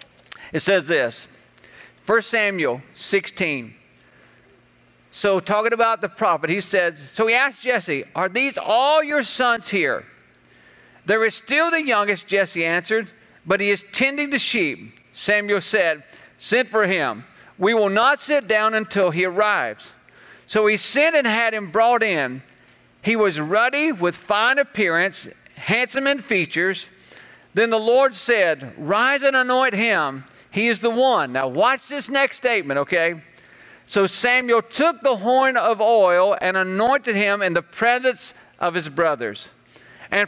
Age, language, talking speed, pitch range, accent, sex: 50-69, English, 150 wpm, 185-240 Hz, American, male